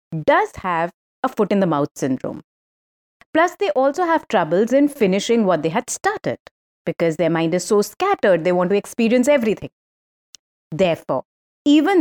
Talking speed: 145 wpm